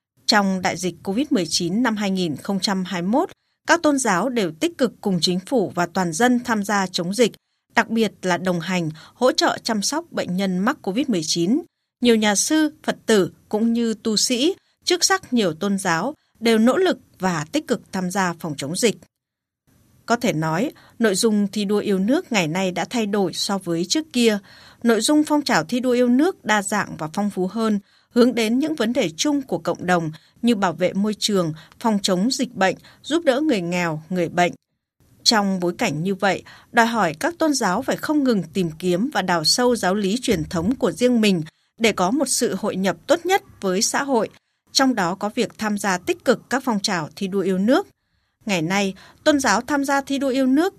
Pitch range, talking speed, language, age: 185-250 Hz, 210 wpm, Vietnamese, 20-39